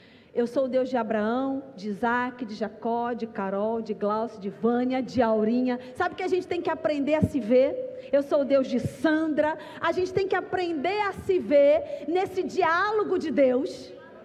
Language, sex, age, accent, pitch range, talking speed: Portuguese, female, 40-59, Brazilian, 260-380 Hz, 200 wpm